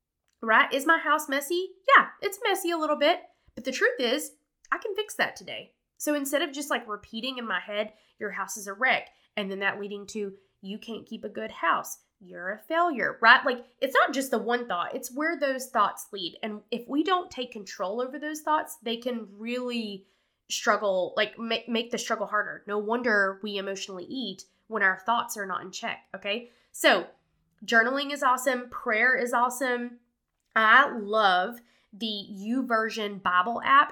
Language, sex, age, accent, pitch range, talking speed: English, female, 20-39, American, 210-275 Hz, 190 wpm